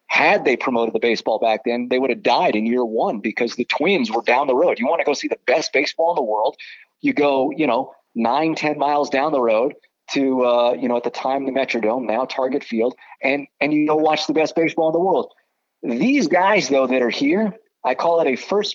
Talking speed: 245 wpm